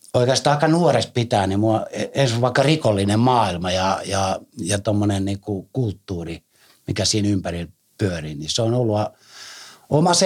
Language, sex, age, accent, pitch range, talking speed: Finnish, male, 60-79, native, 95-120 Hz, 140 wpm